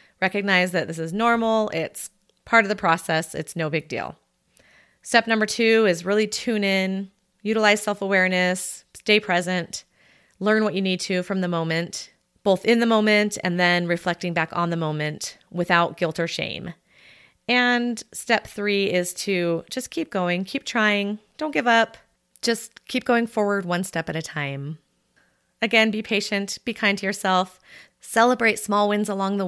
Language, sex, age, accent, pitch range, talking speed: English, female, 30-49, American, 170-210 Hz, 165 wpm